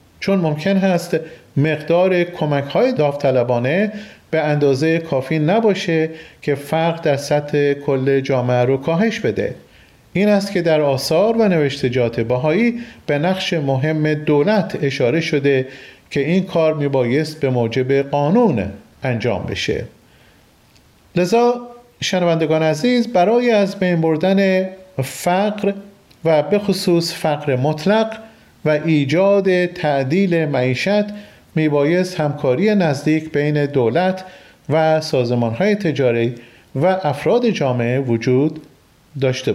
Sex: male